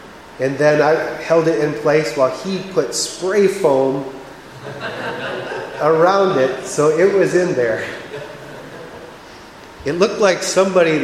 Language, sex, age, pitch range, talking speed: English, male, 30-49, 140-185 Hz, 125 wpm